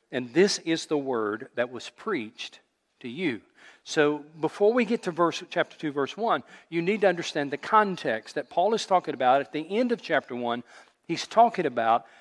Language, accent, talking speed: English, American, 195 wpm